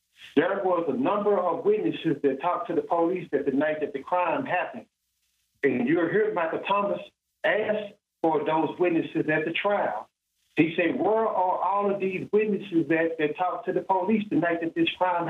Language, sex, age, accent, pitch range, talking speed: English, male, 50-69, American, 165-210 Hz, 190 wpm